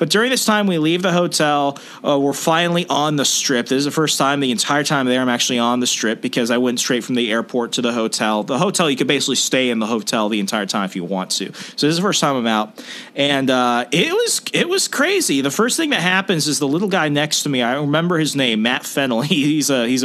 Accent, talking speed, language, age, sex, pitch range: American, 270 wpm, English, 30-49, male, 125-175 Hz